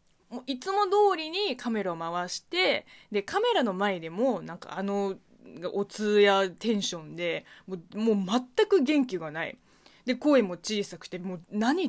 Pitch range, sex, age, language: 190-305 Hz, female, 20-39, Japanese